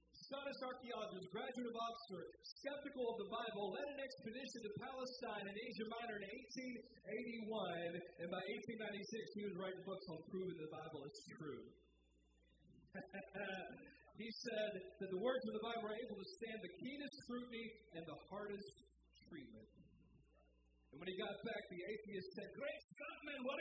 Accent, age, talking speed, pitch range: American, 40-59, 160 wpm, 155-230 Hz